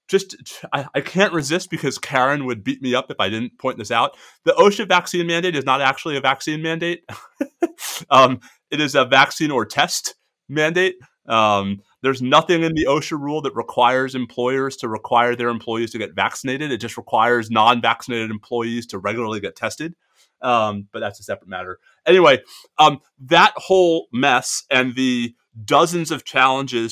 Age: 30-49